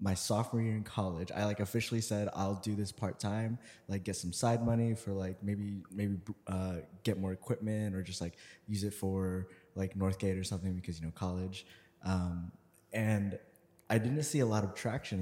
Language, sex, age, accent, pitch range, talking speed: English, male, 20-39, American, 95-110 Hz, 195 wpm